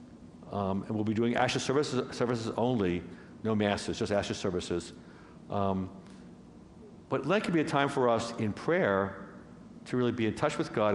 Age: 60-79